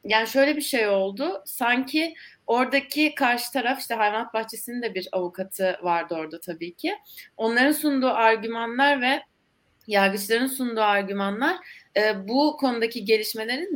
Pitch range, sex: 190-235 Hz, female